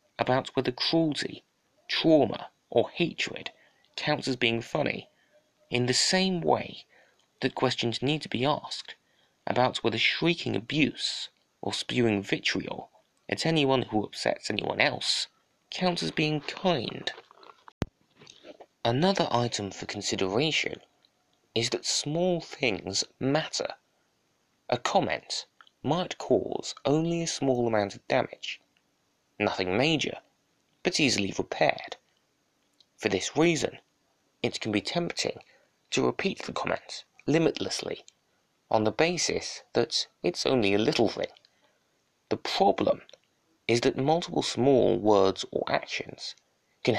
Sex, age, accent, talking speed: male, 30-49, British, 115 wpm